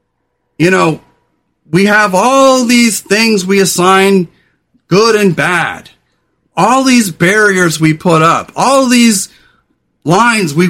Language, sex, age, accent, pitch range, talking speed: English, male, 40-59, American, 165-225 Hz, 125 wpm